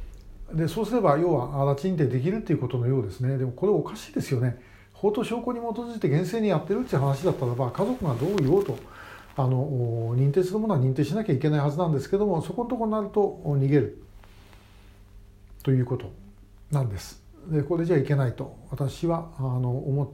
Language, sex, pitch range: Japanese, male, 120-150 Hz